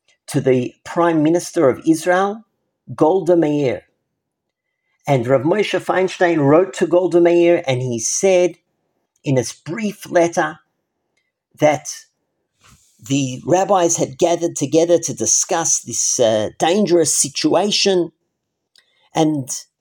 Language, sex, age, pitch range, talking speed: English, male, 50-69, 140-180 Hz, 110 wpm